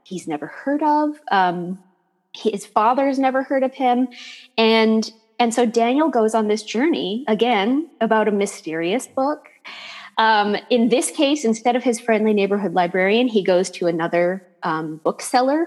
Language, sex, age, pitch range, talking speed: English, female, 20-39, 185-240 Hz, 155 wpm